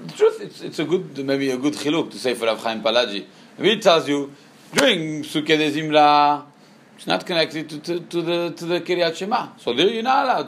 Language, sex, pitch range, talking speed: English, male, 135-190 Hz, 220 wpm